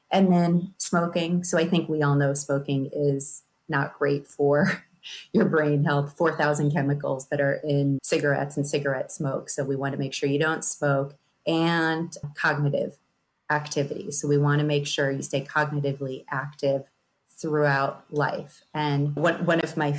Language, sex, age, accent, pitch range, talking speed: English, female, 30-49, American, 145-175 Hz, 165 wpm